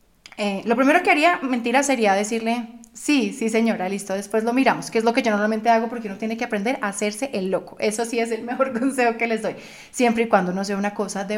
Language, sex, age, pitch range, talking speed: Spanish, female, 30-49, 210-245 Hz, 255 wpm